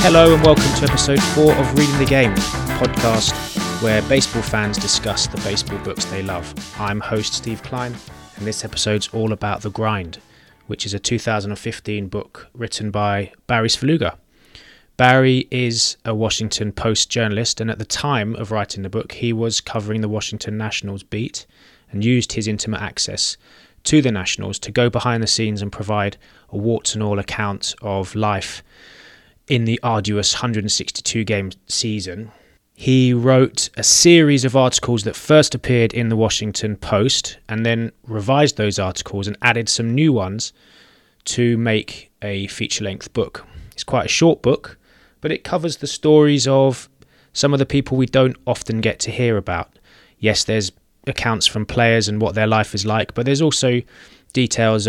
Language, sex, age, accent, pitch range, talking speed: English, male, 20-39, British, 105-120 Hz, 170 wpm